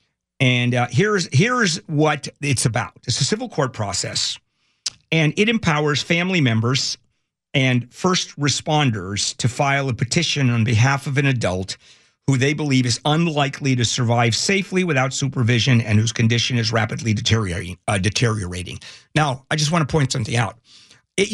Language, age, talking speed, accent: English, 50-69, 155 wpm, American